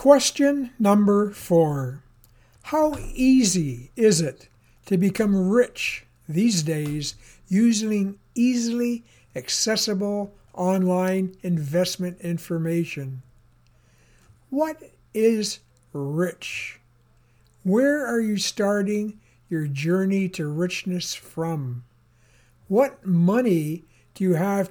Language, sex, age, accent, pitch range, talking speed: English, male, 60-79, American, 145-210 Hz, 85 wpm